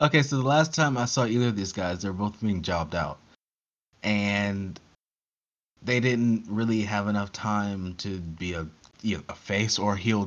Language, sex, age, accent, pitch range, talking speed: English, male, 30-49, American, 90-110 Hz, 195 wpm